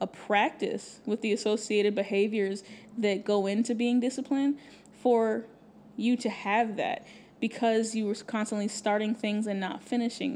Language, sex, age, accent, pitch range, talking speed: English, female, 10-29, American, 205-240 Hz, 145 wpm